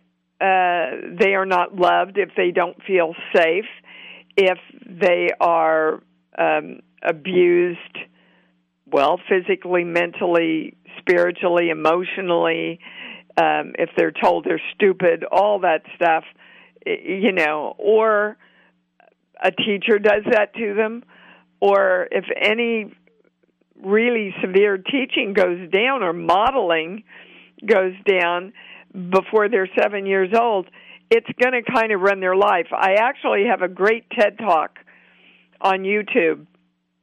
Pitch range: 170-205 Hz